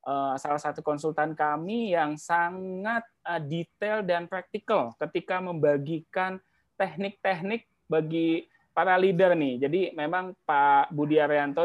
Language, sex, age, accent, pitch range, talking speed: English, male, 20-39, Indonesian, 140-180 Hz, 110 wpm